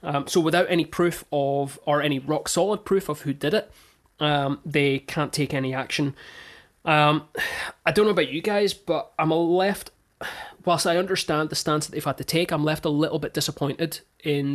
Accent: British